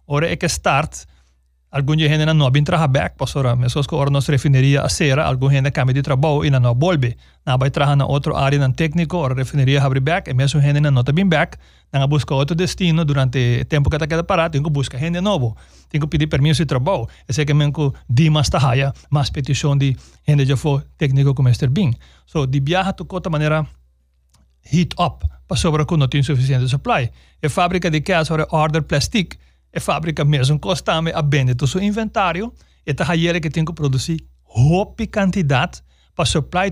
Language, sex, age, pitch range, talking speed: English, male, 30-49, 135-170 Hz, 225 wpm